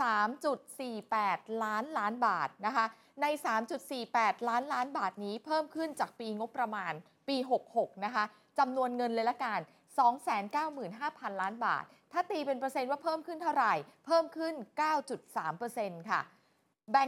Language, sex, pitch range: Thai, female, 210-275 Hz